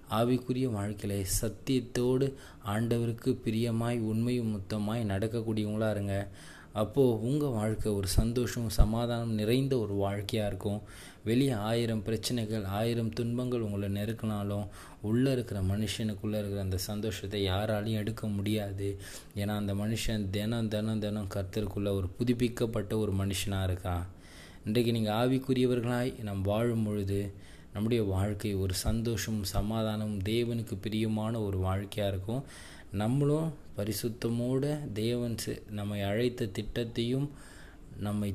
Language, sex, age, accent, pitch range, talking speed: Tamil, male, 20-39, native, 100-115 Hz, 105 wpm